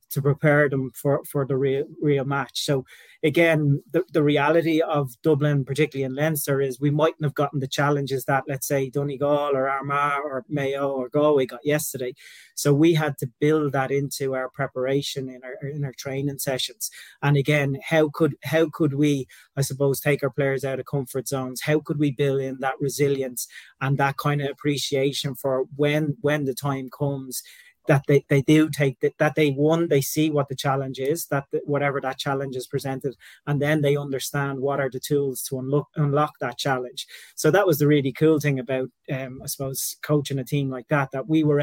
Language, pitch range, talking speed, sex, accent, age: English, 135-150 Hz, 205 wpm, male, Irish, 30-49